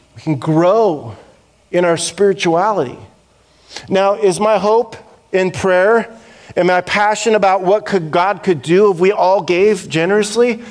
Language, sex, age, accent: English, male, 40-59, American